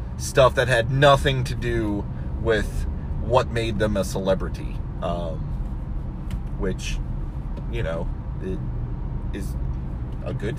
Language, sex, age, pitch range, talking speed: English, male, 30-49, 95-135 Hz, 110 wpm